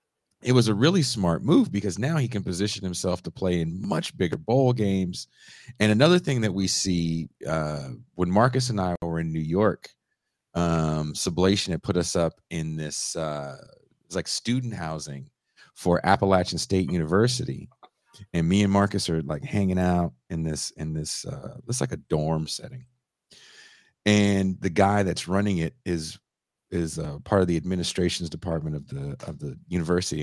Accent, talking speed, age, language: American, 175 wpm, 40-59, English